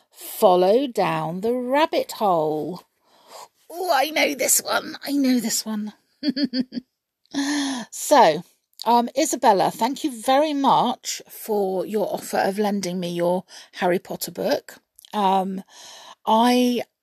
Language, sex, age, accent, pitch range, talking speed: English, female, 40-59, British, 175-240 Hz, 115 wpm